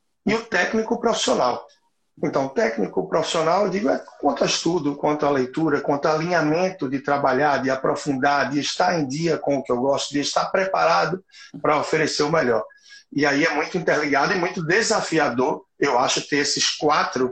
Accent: Brazilian